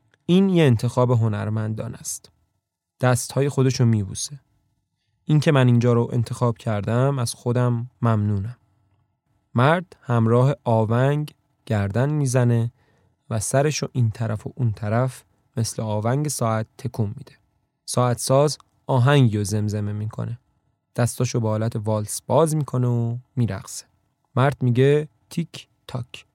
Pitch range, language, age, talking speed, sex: 115-145 Hz, Persian, 20-39, 120 wpm, male